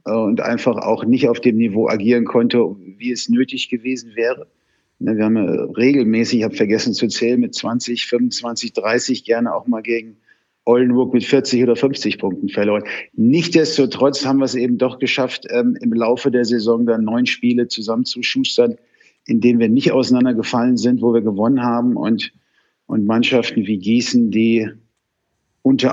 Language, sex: German, male